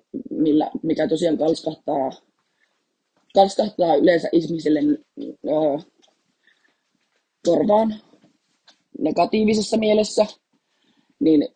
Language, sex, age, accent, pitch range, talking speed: Finnish, female, 30-49, native, 155-215 Hz, 55 wpm